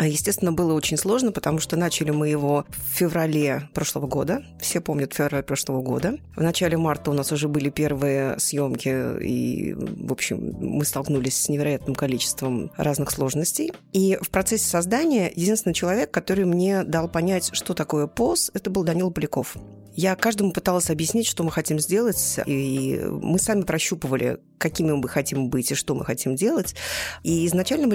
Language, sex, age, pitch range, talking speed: Russian, female, 30-49, 150-190 Hz, 165 wpm